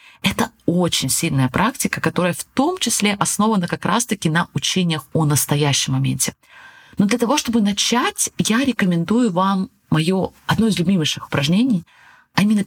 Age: 20-39